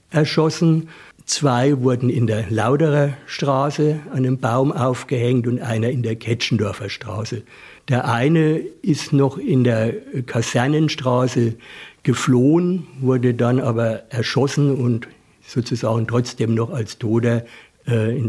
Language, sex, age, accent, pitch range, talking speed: German, male, 60-79, German, 115-145 Hz, 120 wpm